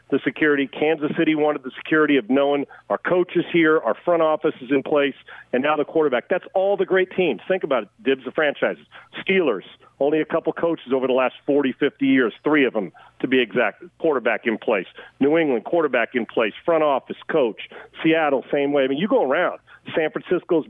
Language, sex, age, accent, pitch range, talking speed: English, male, 40-59, American, 140-165 Hz, 205 wpm